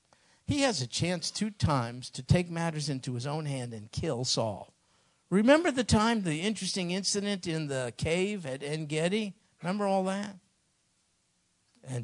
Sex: male